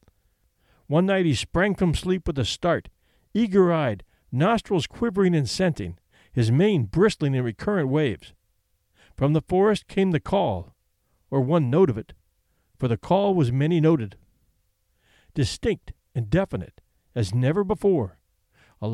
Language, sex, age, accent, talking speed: English, male, 50-69, American, 135 wpm